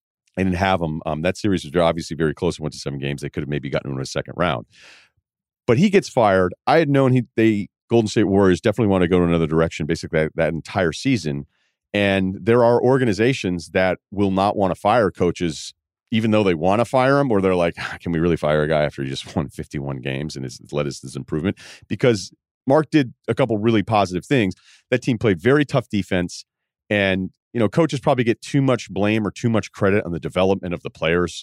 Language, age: English, 40-59